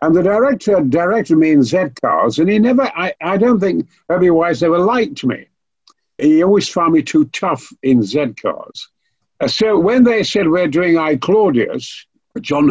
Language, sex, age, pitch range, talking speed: English, male, 60-79, 150-230 Hz, 185 wpm